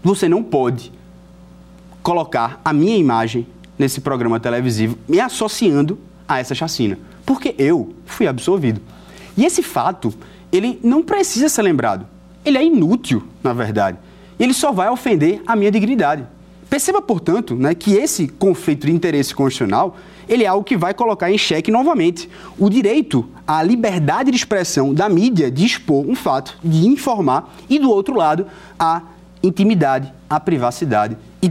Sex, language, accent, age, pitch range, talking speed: male, Portuguese, Brazilian, 20-39, 135-215 Hz, 155 wpm